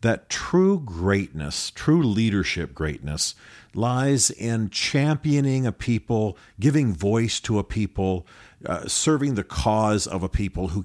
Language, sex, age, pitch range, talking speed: English, male, 50-69, 90-115 Hz, 135 wpm